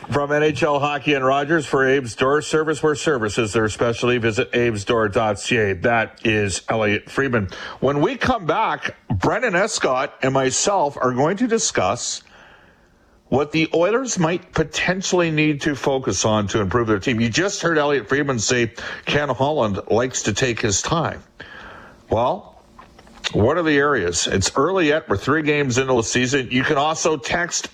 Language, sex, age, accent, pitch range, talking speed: English, male, 50-69, American, 105-140 Hz, 165 wpm